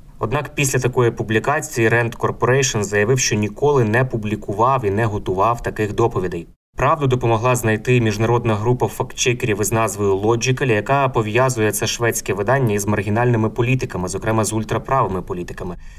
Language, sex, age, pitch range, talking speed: Ukrainian, male, 20-39, 110-130 Hz, 140 wpm